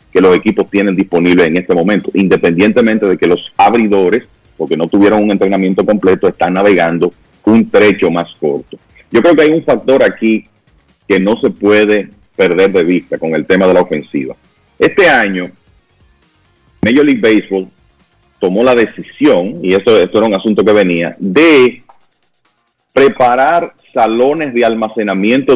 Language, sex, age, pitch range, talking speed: Spanish, male, 40-59, 95-130 Hz, 155 wpm